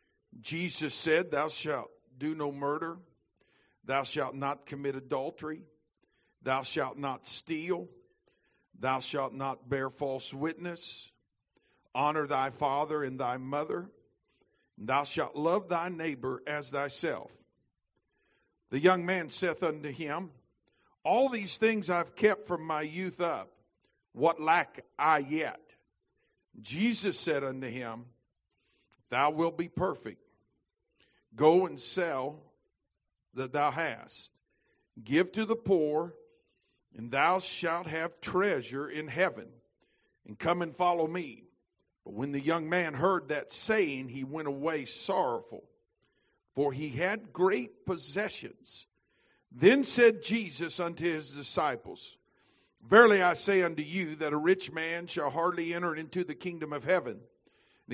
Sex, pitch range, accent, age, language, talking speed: male, 145-180 Hz, American, 50-69, English, 130 wpm